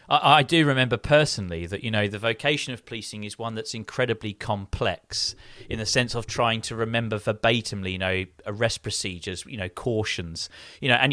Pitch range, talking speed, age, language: 105-130 Hz, 185 wpm, 30-49, English